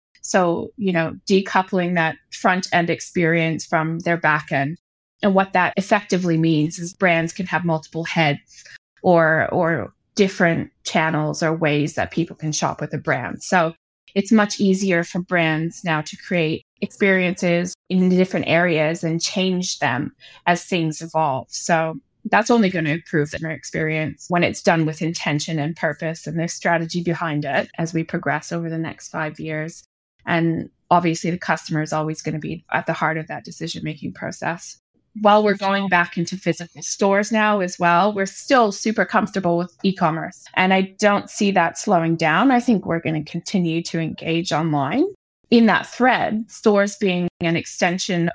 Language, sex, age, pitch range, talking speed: English, female, 20-39, 160-190 Hz, 170 wpm